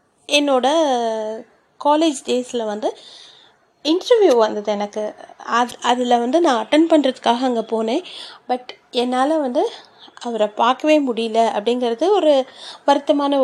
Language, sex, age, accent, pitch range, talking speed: Tamil, female, 30-49, native, 235-315 Hz, 105 wpm